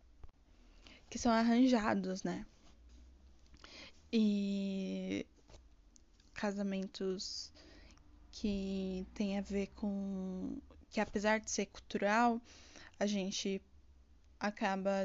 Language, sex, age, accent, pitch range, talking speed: Portuguese, female, 10-29, Brazilian, 195-220 Hz, 75 wpm